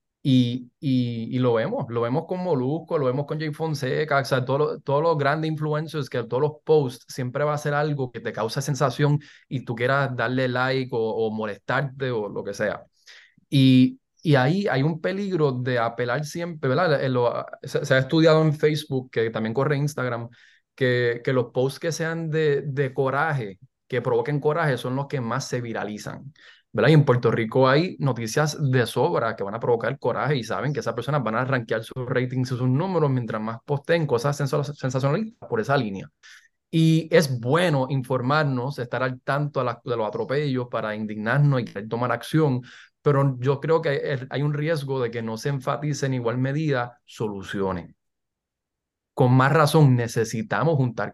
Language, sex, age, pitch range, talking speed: English, male, 20-39, 120-150 Hz, 185 wpm